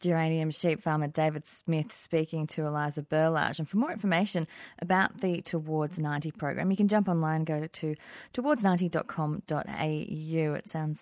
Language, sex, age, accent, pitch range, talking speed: English, female, 30-49, Australian, 165-195 Hz, 150 wpm